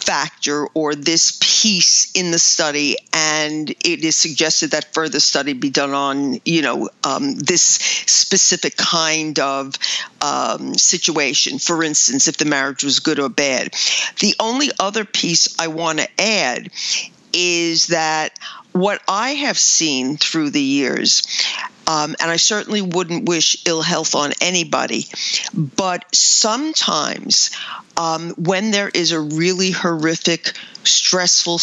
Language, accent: English, American